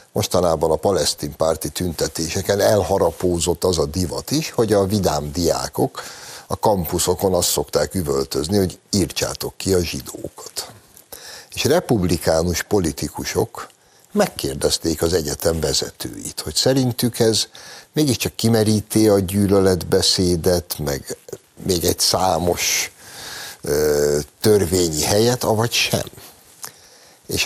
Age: 60-79